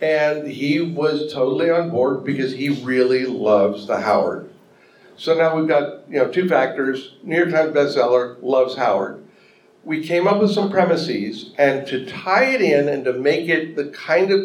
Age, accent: 50-69, American